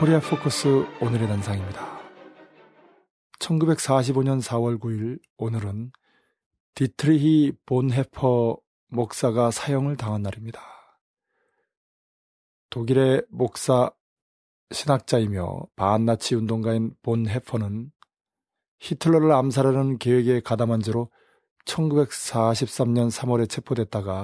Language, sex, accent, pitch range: Korean, male, native, 115-135 Hz